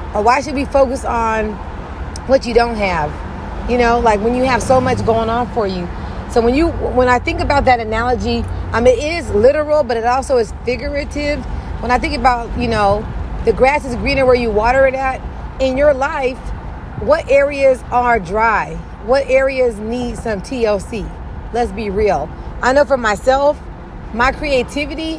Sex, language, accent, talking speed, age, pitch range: female, English, American, 185 wpm, 30-49, 220-260 Hz